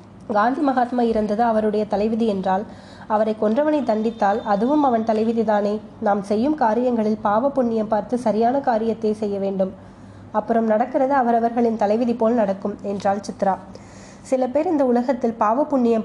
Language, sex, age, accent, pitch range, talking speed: Tamil, female, 20-39, native, 210-245 Hz, 135 wpm